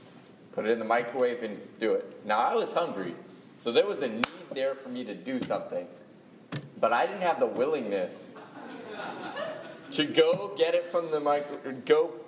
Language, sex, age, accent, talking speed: English, male, 30-49, American, 180 wpm